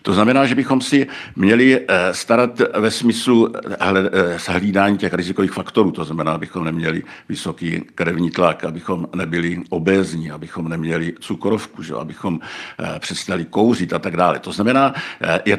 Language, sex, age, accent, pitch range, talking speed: Czech, male, 60-79, native, 90-110 Hz, 140 wpm